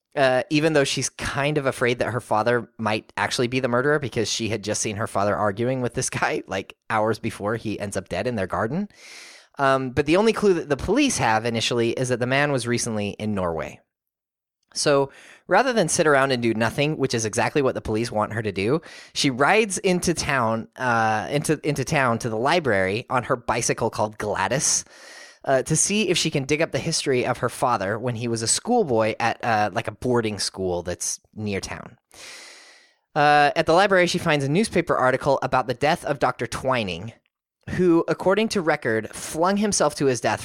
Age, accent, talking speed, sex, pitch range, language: 20-39, American, 205 wpm, male, 110-150 Hz, English